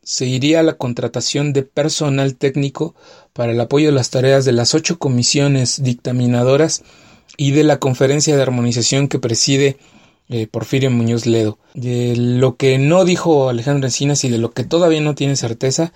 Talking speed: 175 wpm